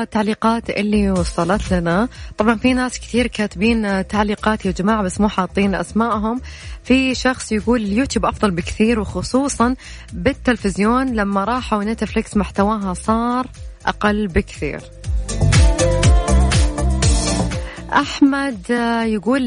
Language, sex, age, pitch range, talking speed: Arabic, female, 20-39, 195-235 Hz, 100 wpm